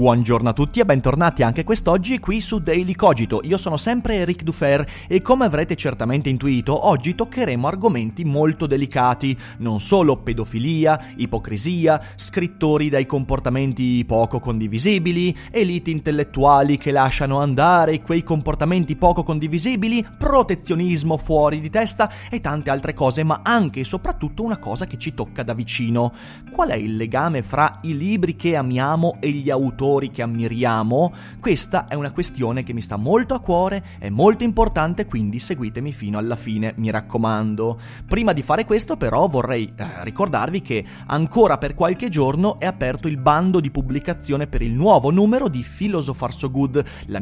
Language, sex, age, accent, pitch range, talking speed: Italian, male, 30-49, native, 120-180 Hz, 160 wpm